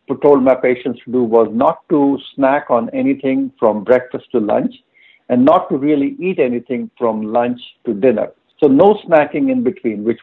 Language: English